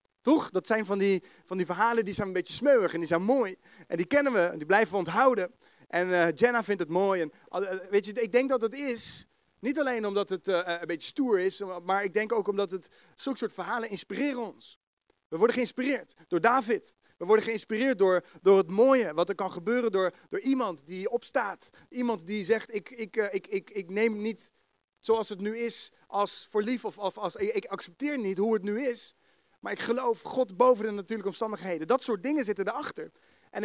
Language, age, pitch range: Dutch, 40-59, 185-235 Hz